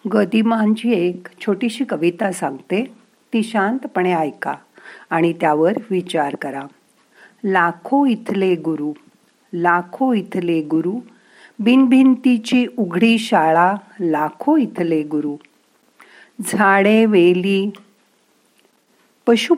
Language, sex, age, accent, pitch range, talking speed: Marathi, female, 50-69, native, 170-230 Hz, 80 wpm